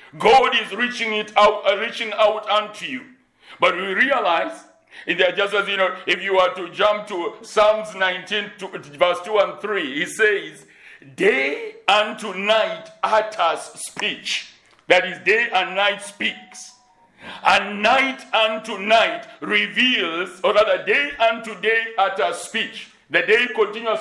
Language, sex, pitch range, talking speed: English, male, 195-250 Hz, 145 wpm